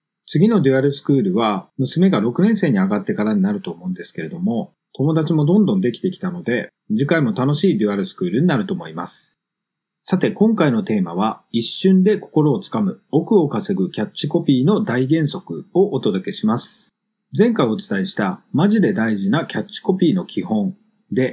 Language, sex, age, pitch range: Japanese, male, 40-59, 160-210 Hz